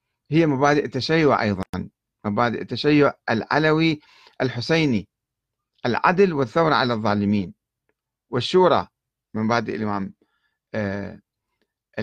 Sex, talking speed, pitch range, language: male, 80 wpm, 115-160 Hz, Arabic